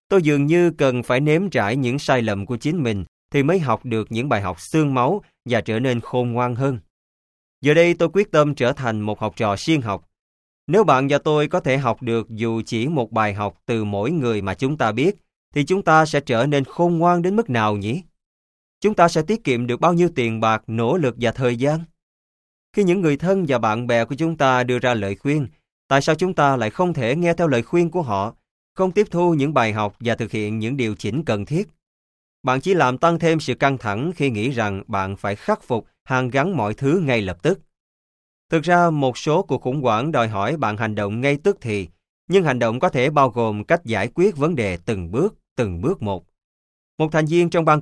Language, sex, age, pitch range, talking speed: Vietnamese, male, 20-39, 105-160 Hz, 235 wpm